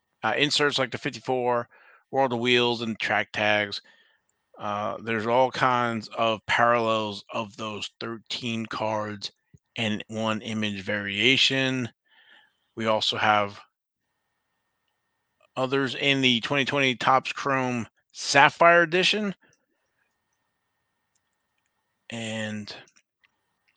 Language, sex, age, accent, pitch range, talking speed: English, male, 30-49, American, 110-135 Hz, 95 wpm